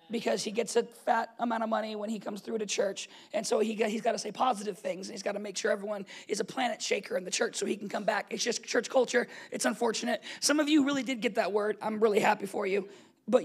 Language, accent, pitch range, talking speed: English, American, 210-280 Hz, 280 wpm